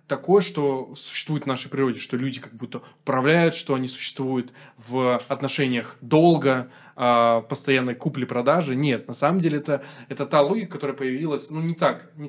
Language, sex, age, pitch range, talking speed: Russian, male, 20-39, 125-145 Hz, 150 wpm